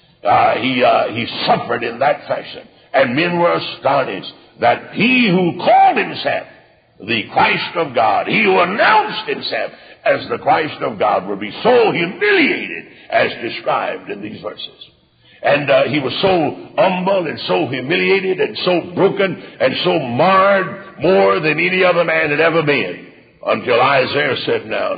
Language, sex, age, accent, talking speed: English, male, 60-79, American, 160 wpm